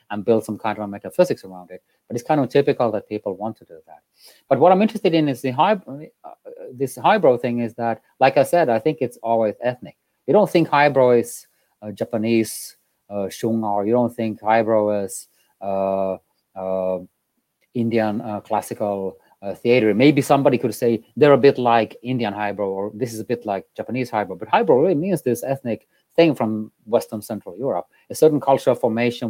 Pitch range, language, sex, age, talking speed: 105-125 Hz, English, male, 30-49, 195 wpm